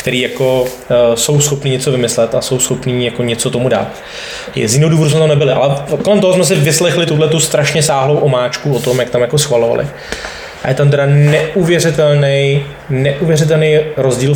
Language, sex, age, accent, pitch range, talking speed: Czech, male, 20-39, native, 115-140 Hz, 180 wpm